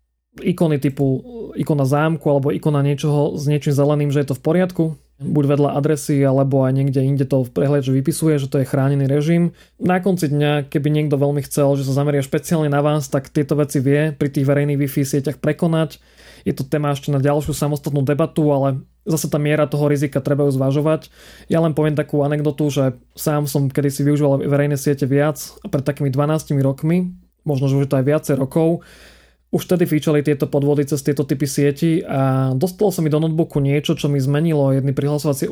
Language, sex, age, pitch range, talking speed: Slovak, male, 20-39, 140-155 Hz, 200 wpm